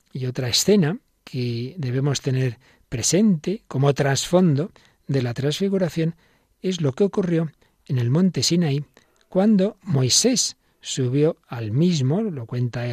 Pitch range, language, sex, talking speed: 120-170 Hz, Spanish, male, 125 wpm